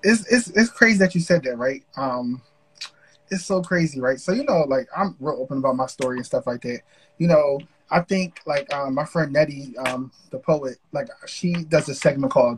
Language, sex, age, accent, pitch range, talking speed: English, male, 20-39, American, 140-190 Hz, 220 wpm